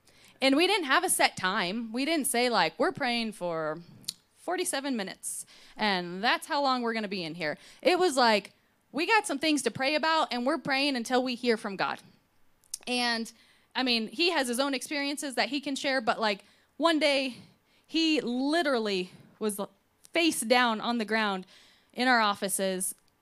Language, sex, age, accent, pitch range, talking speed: English, female, 20-39, American, 185-260 Hz, 185 wpm